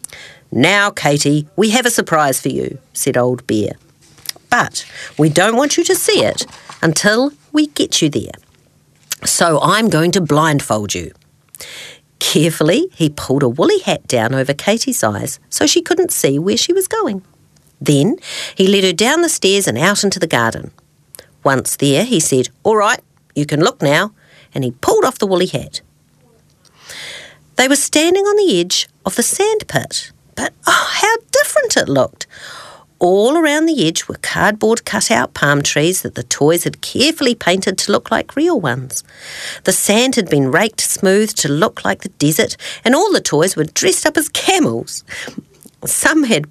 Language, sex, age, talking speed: English, female, 50-69, 175 wpm